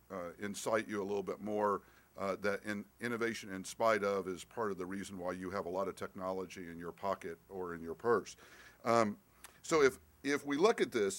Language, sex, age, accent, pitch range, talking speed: English, male, 50-69, American, 95-120 Hz, 220 wpm